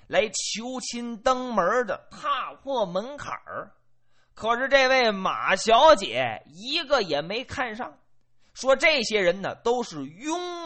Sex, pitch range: male, 165-270 Hz